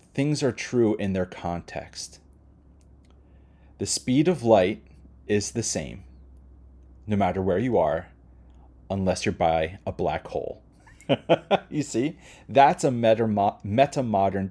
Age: 30-49